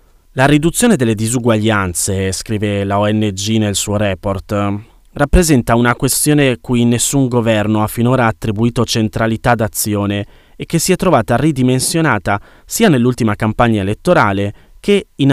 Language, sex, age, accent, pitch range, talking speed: Italian, male, 20-39, native, 105-130 Hz, 130 wpm